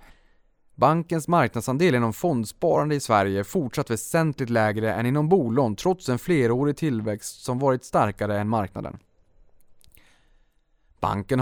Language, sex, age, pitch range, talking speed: Swedish, male, 20-39, 110-145 Hz, 120 wpm